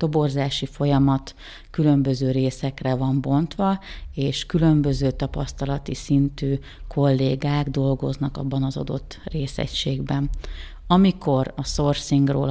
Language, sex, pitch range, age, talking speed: Hungarian, female, 135-150 Hz, 30-49, 95 wpm